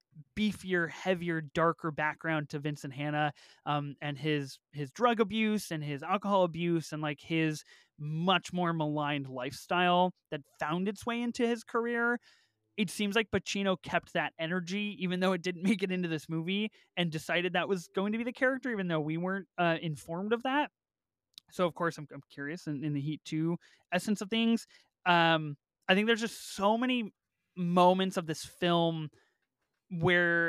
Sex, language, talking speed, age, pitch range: male, English, 175 wpm, 20-39, 155-190 Hz